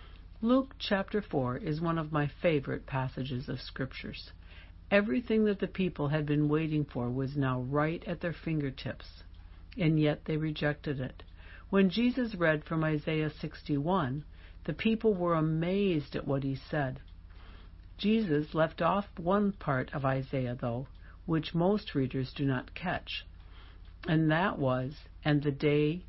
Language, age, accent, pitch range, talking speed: English, 60-79, American, 125-165 Hz, 145 wpm